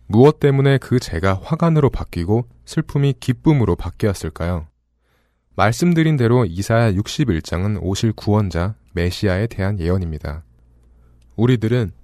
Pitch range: 90-125 Hz